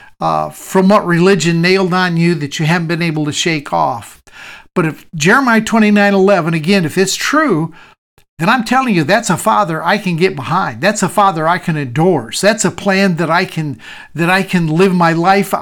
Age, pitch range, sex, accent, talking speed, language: 50-69, 160-200 Hz, male, American, 210 wpm, English